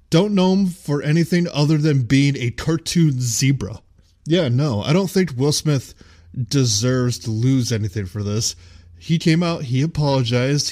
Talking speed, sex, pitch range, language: 160 wpm, male, 110-140 Hz, English